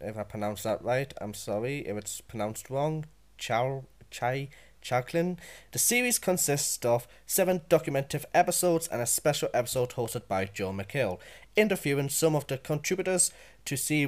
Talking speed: 160 wpm